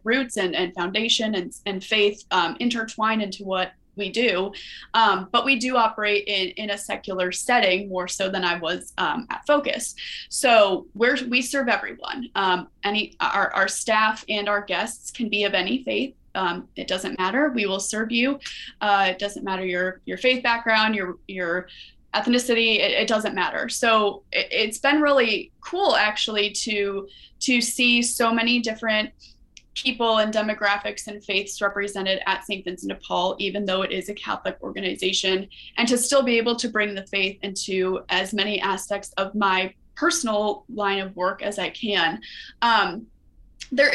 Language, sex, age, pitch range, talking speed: English, female, 20-39, 195-240 Hz, 170 wpm